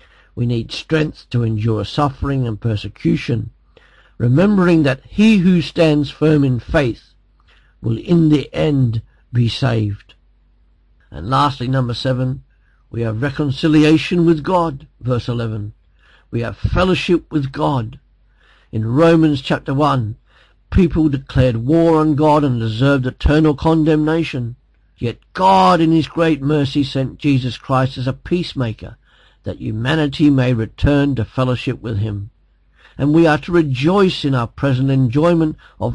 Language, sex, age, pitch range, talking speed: English, male, 50-69, 115-155 Hz, 135 wpm